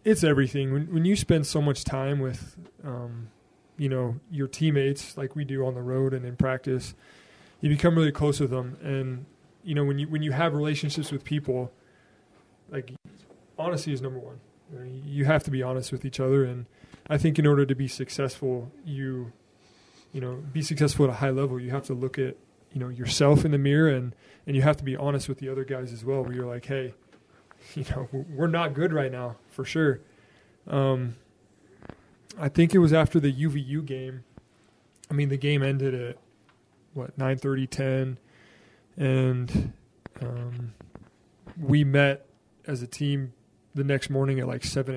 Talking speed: 190 wpm